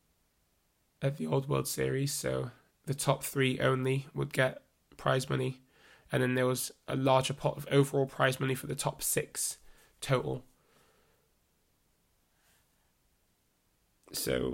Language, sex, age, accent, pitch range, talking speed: English, male, 20-39, British, 130-145 Hz, 130 wpm